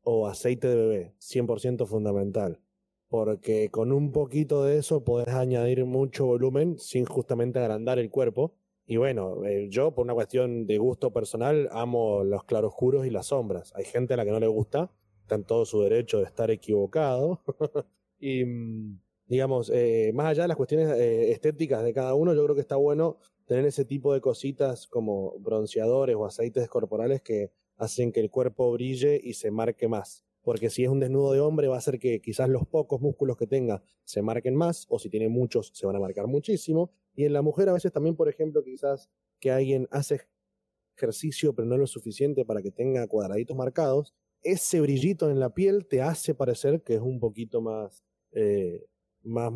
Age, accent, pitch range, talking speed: 20-39, Argentinian, 115-155 Hz, 195 wpm